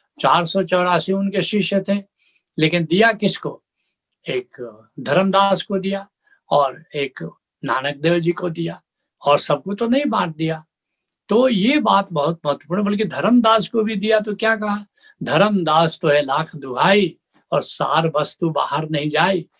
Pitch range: 150-200 Hz